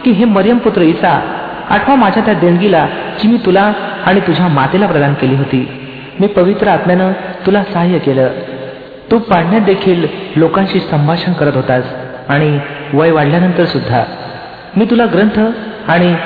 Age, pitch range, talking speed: 40-59, 145-190 Hz, 145 wpm